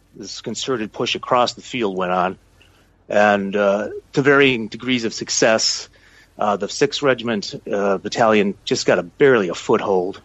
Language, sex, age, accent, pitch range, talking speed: English, male, 30-49, American, 100-120 Hz, 150 wpm